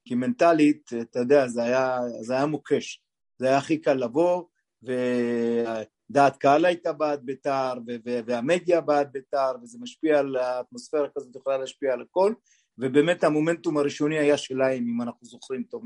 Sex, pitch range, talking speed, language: male, 125-155 Hz, 155 wpm, Hebrew